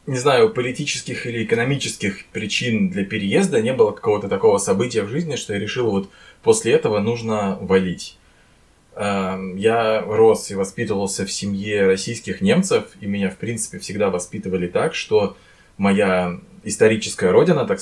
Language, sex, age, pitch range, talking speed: Russian, male, 20-39, 95-110 Hz, 145 wpm